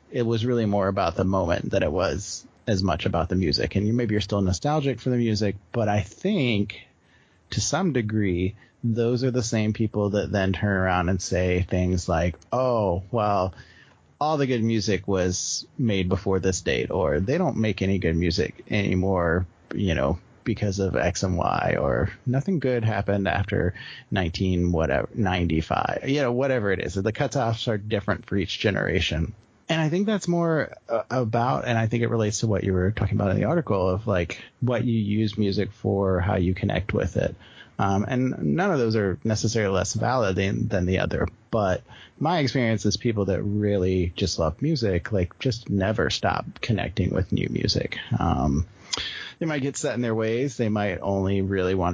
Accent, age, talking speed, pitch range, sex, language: American, 30-49, 190 wpm, 95-115 Hz, male, English